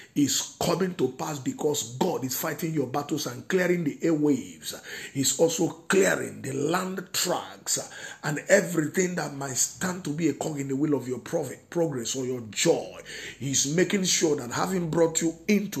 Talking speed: 175 wpm